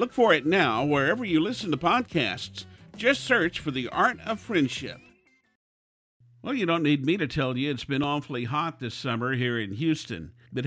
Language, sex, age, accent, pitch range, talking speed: English, male, 50-69, American, 120-155 Hz, 190 wpm